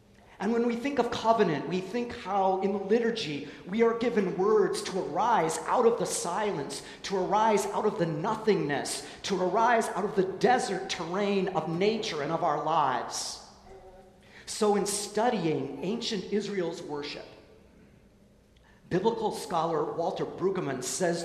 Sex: male